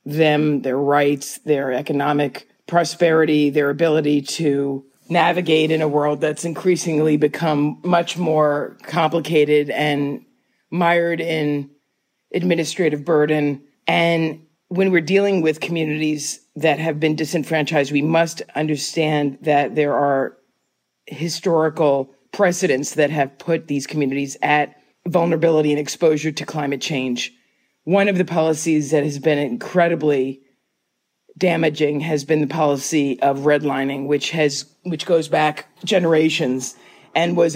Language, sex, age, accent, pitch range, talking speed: English, female, 40-59, American, 145-165 Hz, 125 wpm